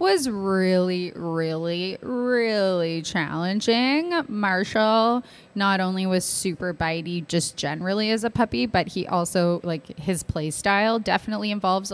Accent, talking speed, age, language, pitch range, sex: American, 125 wpm, 20-39, English, 170-205 Hz, female